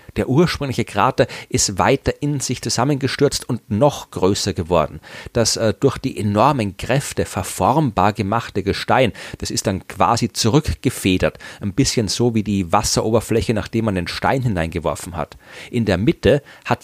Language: German